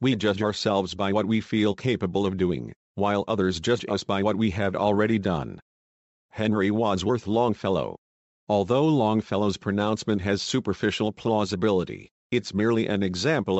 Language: English